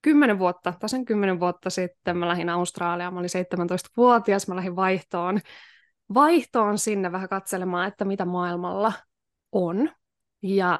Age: 20-39